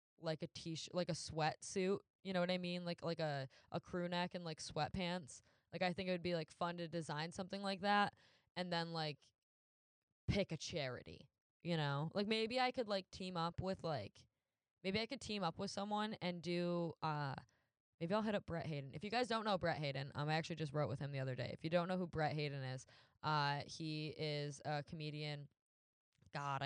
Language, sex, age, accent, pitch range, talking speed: English, female, 10-29, American, 145-180 Hz, 220 wpm